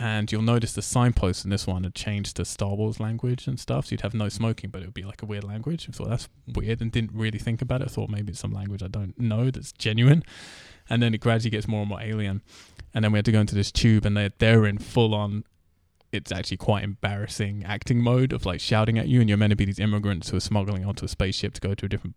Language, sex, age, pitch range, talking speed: English, male, 20-39, 100-115 Hz, 280 wpm